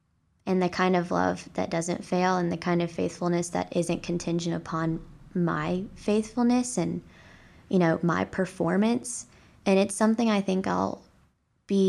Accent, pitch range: American, 155-185 Hz